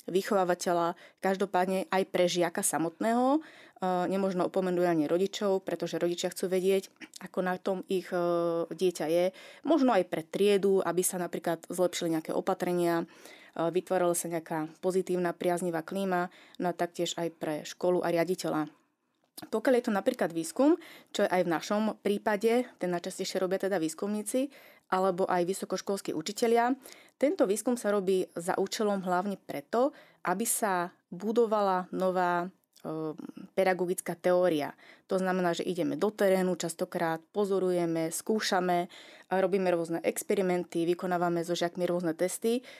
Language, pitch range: Slovak, 175-205 Hz